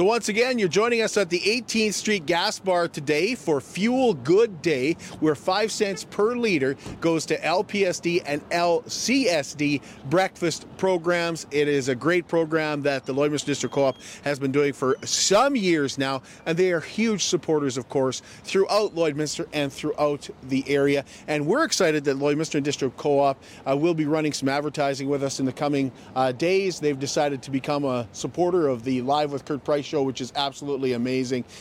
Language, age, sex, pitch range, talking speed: English, 40-59, male, 135-170 Hz, 180 wpm